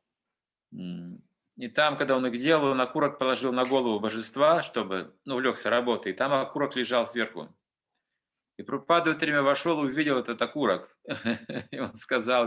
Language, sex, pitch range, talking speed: Russian, male, 120-155 Hz, 155 wpm